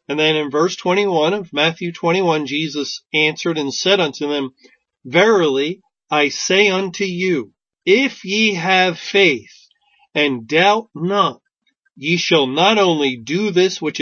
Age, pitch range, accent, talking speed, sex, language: 40-59, 145-200 Hz, American, 140 wpm, male, English